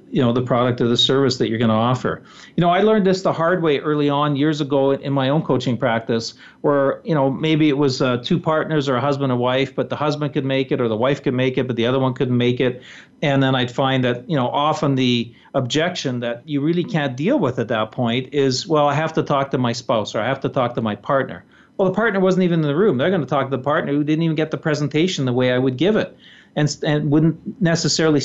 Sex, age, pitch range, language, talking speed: male, 40-59, 130-155 Hz, English, 275 wpm